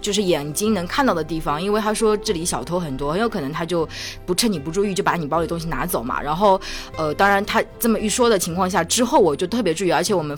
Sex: female